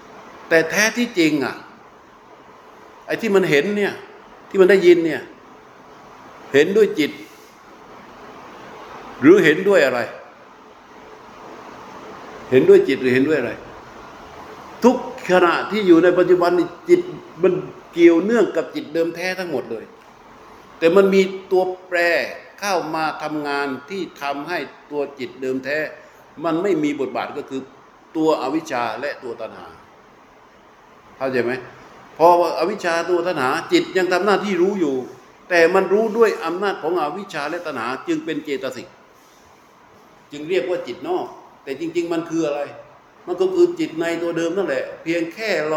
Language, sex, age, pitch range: Thai, male, 60-79, 145-215 Hz